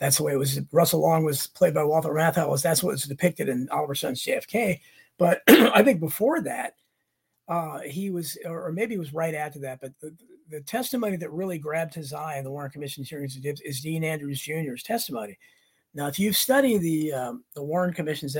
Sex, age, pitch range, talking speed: male, 40-59, 145-195 Hz, 210 wpm